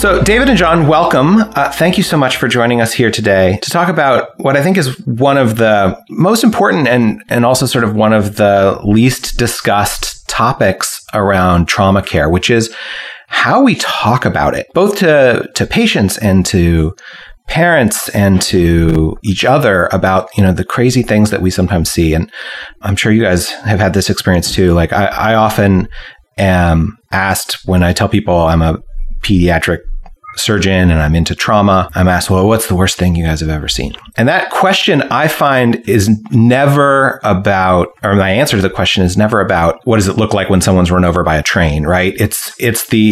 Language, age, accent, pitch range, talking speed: English, 30-49, American, 90-115 Hz, 200 wpm